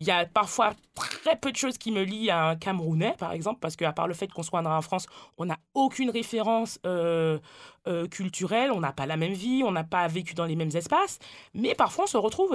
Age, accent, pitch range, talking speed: 20-39, French, 170-215 Hz, 250 wpm